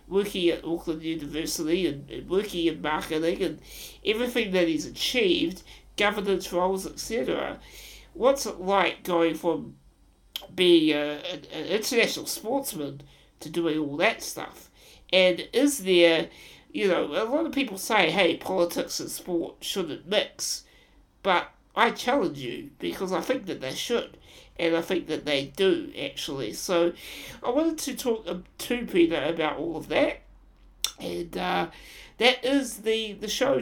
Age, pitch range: 60-79, 160-220 Hz